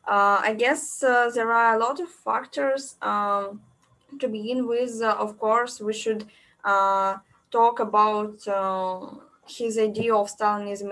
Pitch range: 195-230 Hz